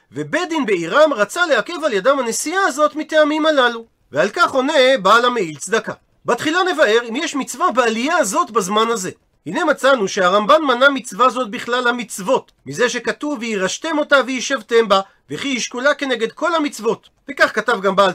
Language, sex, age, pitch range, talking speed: Hebrew, male, 40-59, 215-280 Hz, 165 wpm